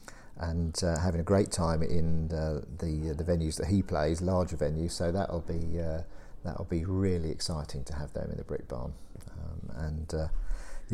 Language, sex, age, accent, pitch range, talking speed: English, male, 50-69, British, 80-95 Hz, 190 wpm